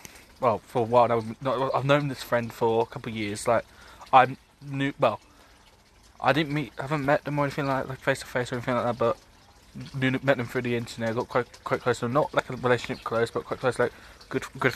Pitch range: 105-130 Hz